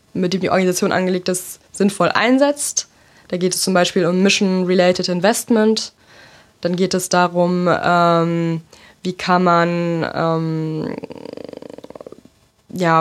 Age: 20-39